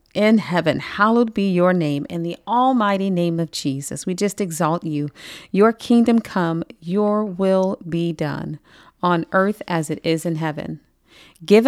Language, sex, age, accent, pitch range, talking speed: English, female, 40-59, American, 155-195 Hz, 160 wpm